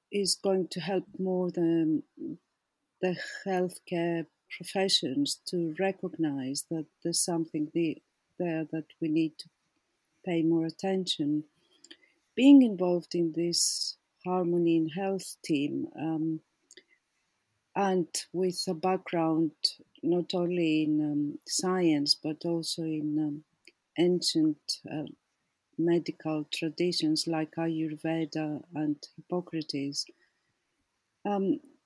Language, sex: English, female